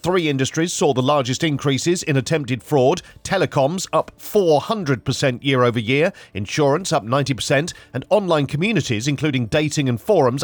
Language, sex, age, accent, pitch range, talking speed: English, male, 40-59, British, 130-165 Hz, 145 wpm